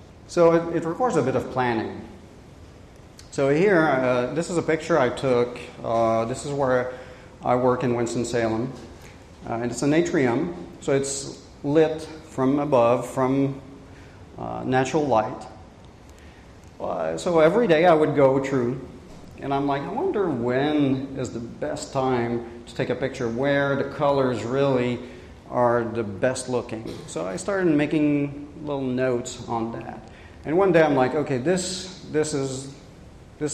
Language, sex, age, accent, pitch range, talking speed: English, male, 40-59, American, 120-145 Hz, 150 wpm